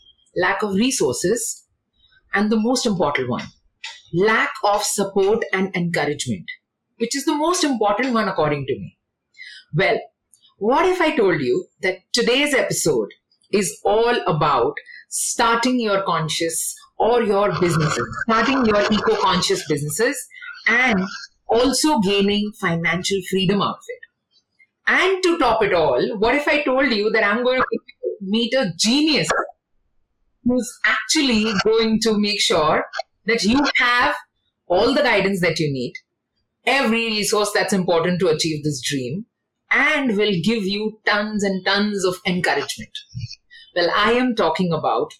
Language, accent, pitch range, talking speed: English, Indian, 185-250 Hz, 140 wpm